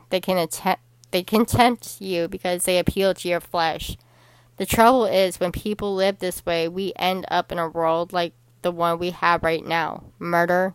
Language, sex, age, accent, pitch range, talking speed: English, female, 10-29, American, 160-180 Hz, 195 wpm